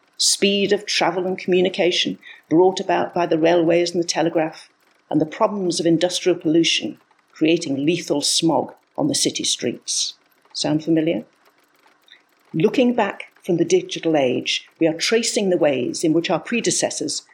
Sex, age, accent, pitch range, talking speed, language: female, 50-69, British, 165-255 Hz, 150 wpm, English